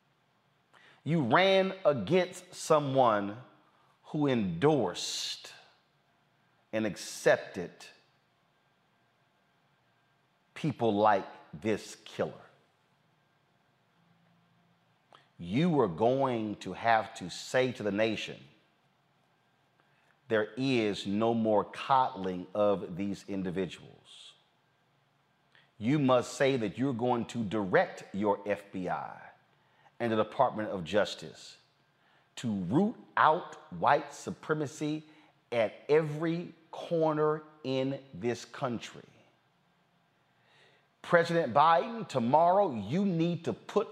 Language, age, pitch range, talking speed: English, 40-59, 115-155 Hz, 85 wpm